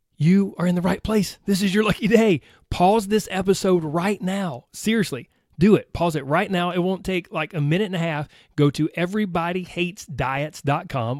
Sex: male